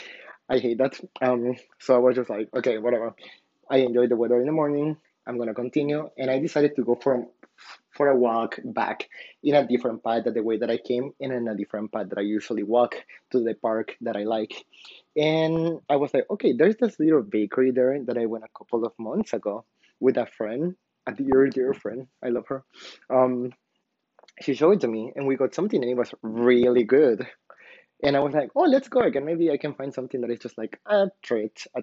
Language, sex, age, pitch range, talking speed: English, male, 20-39, 120-145 Hz, 225 wpm